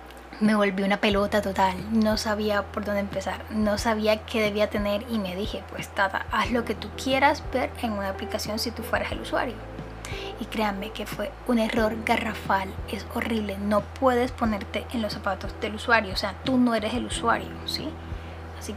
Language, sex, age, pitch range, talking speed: Spanish, female, 10-29, 195-235 Hz, 190 wpm